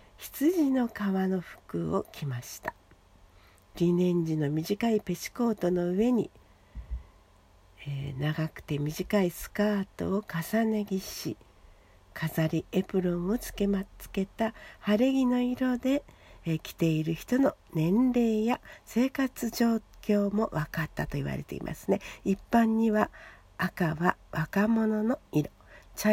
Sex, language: female, Japanese